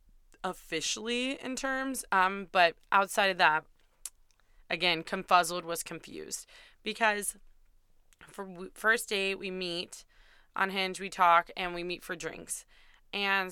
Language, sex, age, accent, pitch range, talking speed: English, female, 20-39, American, 175-215 Hz, 125 wpm